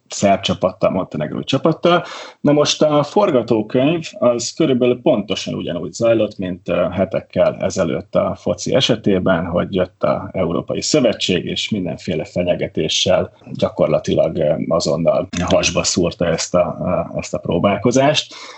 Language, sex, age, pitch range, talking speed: Hungarian, male, 30-49, 95-120 Hz, 115 wpm